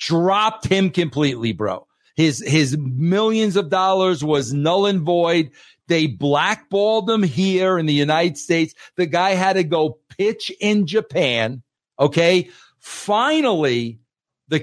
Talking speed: 130 wpm